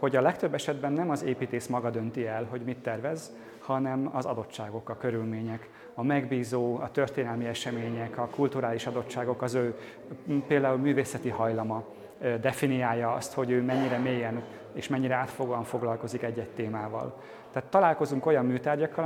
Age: 30-49